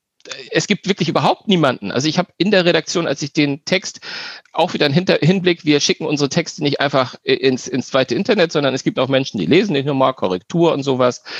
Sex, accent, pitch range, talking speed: male, German, 135-175 Hz, 225 wpm